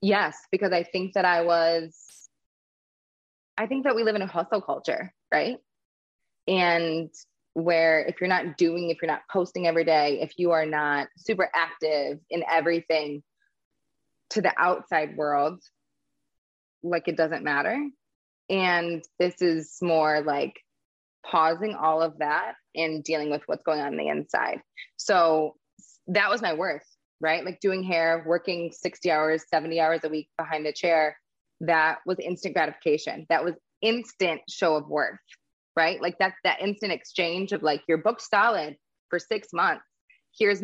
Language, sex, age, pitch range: English, female, 20-39, 160-200 Hz